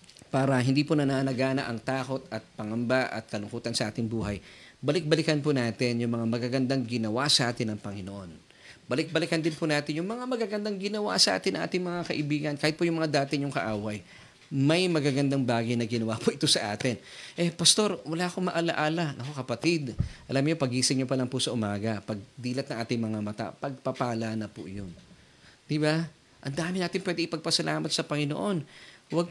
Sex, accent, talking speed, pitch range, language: male, native, 180 wpm, 125-160 Hz, Filipino